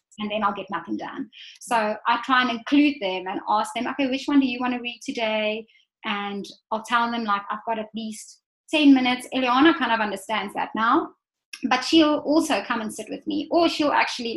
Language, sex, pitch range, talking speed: English, female, 215-280 Hz, 215 wpm